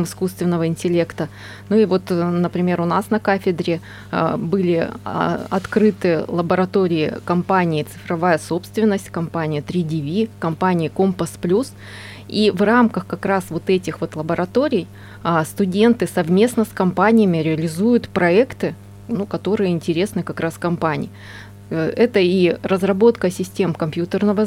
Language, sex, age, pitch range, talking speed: Russian, female, 20-39, 160-195 Hz, 115 wpm